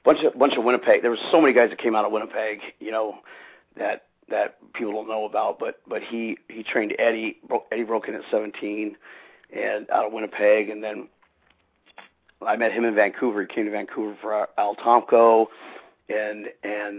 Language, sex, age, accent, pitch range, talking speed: English, male, 40-59, American, 110-120 Hz, 200 wpm